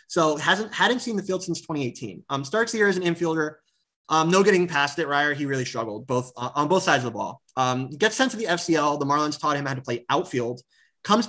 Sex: male